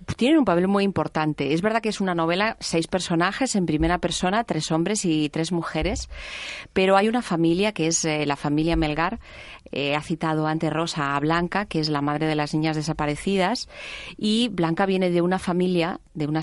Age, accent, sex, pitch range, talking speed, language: 30-49, Spanish, female, 155-190 Hz, 195 wpm, Spanish